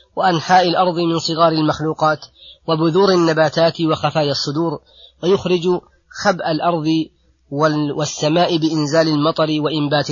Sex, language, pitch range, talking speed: female, Arabic, 140-165 Hz, 95 wpm